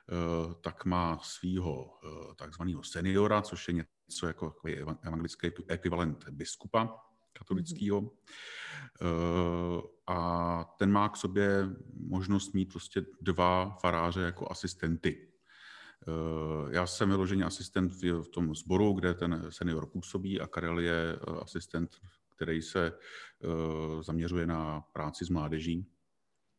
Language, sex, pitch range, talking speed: Slovak, male, 85-95 Hz, 105 wpm